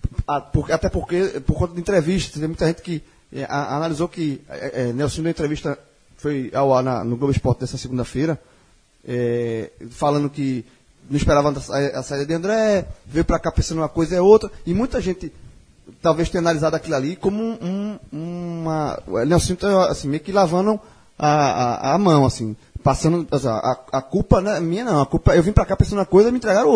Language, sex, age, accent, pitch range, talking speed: Portuguese, male, 20-39, Brazilian, 140-195 Hz, 205 wpm